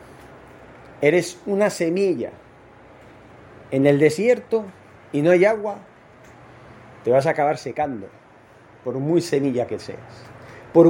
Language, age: Spanish, 40-59